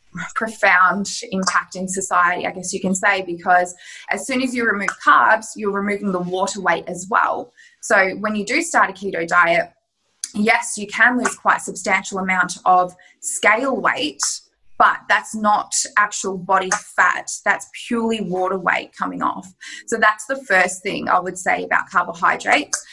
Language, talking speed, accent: English, 165 wpm, Australian